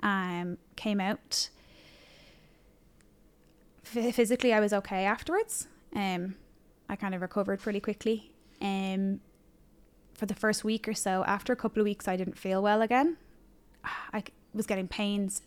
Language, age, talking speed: English, 10-29, 145 wpm